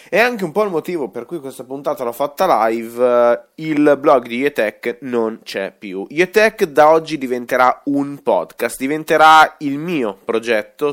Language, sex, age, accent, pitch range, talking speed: Italian, male, 20-39, native, 115-160 Hz, 165 wpm